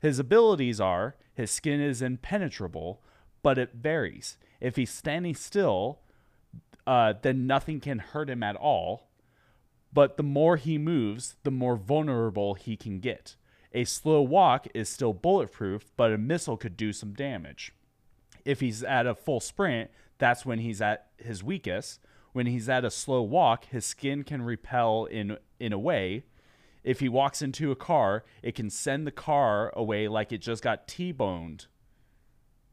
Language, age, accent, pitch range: English, 30-49, American, 110-145 Hz